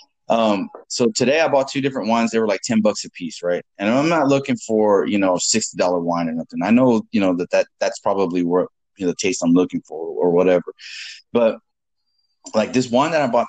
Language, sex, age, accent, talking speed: English, male, 30-49, American, 230 wpm